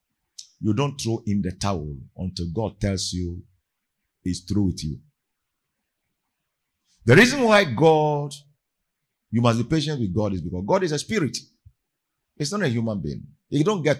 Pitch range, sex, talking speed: 110-170 Hz, male, 165 wpm